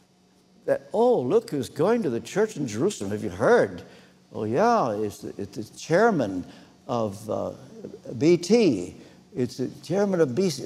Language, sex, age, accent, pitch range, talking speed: English, male, 60-79, American, 175-235 Hz, 160 wpm